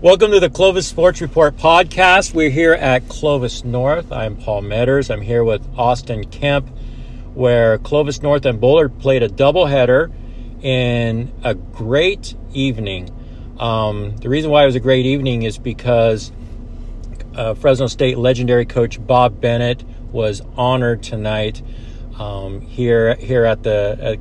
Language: English